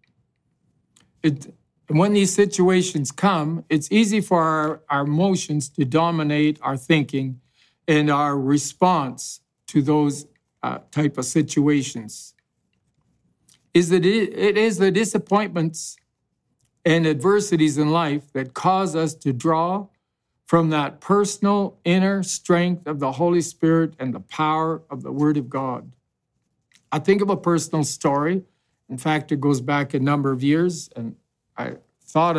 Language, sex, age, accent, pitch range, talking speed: English, male, 50-69, American, 145-170 Hz, 135 wpm